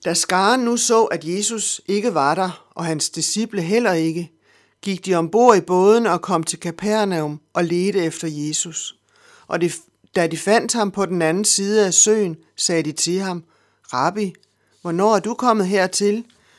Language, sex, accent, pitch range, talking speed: Danish, male, native, 165-205 Hz, 175 wpm